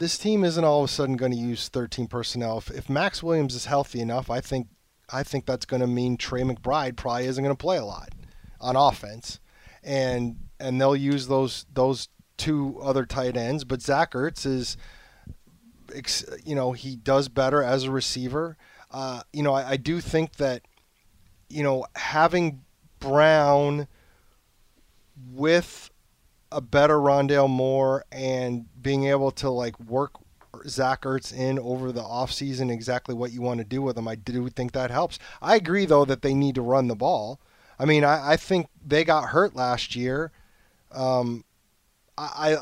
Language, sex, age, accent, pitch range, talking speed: English, male, 30-49, American, 125-145 Hz, 175 wpm